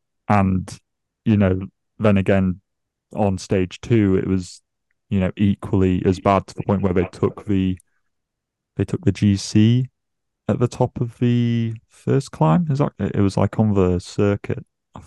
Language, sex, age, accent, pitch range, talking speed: English, male, 20-39, British, 95-105 Hz, 165 wpm